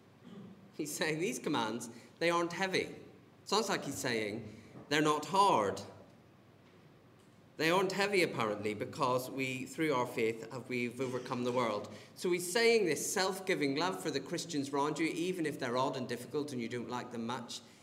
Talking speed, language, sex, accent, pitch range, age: 170 wpm, English, male, British, 120-170 Hz, 30-49